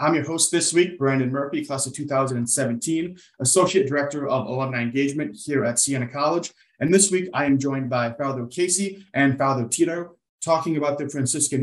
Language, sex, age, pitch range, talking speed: English, male, 30-49, 130-155 Hz, 180 wpm